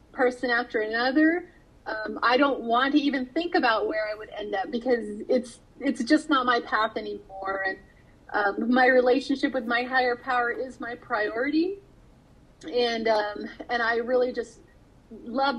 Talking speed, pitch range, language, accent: 160 wpm, 235-280 Hz, English, American